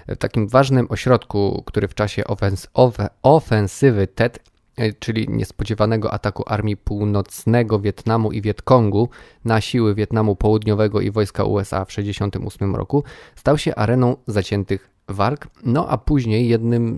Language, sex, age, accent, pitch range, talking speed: Polish, male, 20-39, native, 100-120 Hz, 135 wpm